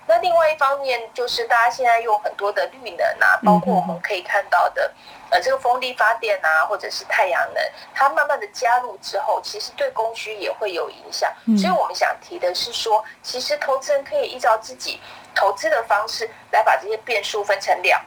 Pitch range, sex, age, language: 220-320 Hz, female, 30-49, Chinese